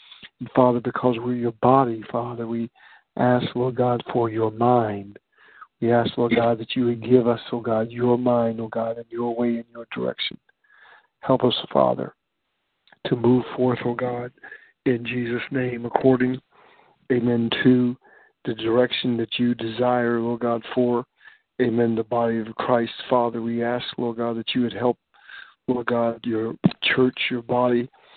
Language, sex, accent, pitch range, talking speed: English, male, American, 115-125 Hz, 160 wpm